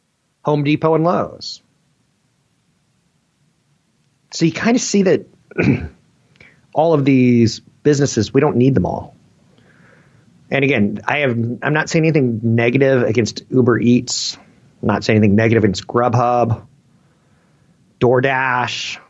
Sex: male